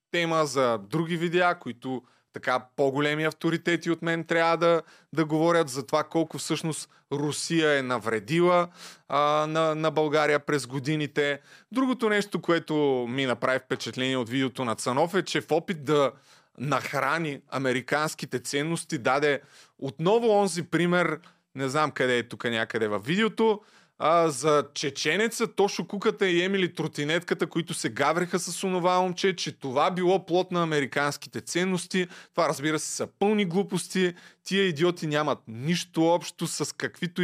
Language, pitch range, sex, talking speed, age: Bulgarian, 140-180 Hz, male, 145 wpm, 30-49